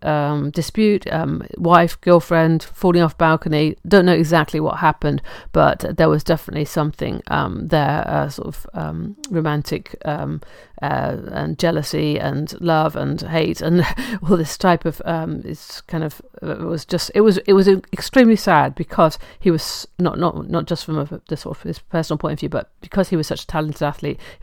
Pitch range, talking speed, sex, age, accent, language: 155-175 Hz, 185 wpm, female, 50-69, British, English